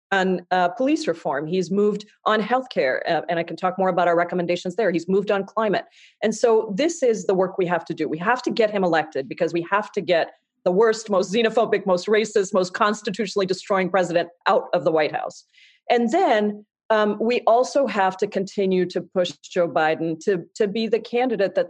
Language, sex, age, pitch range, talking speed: English, female, 40-59, 165-205 Hz, 210 wpm